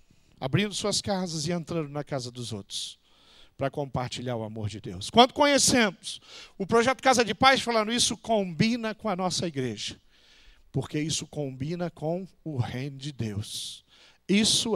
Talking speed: 155 wpm